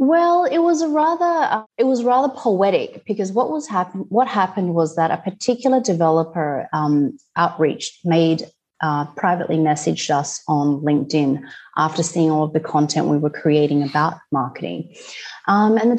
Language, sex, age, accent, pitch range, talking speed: English, female, 30-49, Australian, 155-205 Hz, 165 wpm